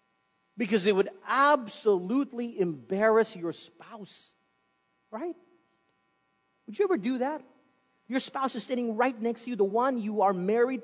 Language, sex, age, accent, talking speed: English, male, 40-59, American, 145 wpm